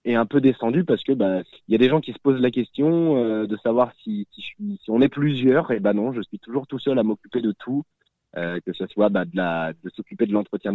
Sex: male